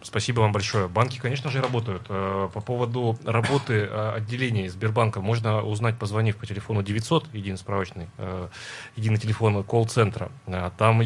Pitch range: 105-125 Hz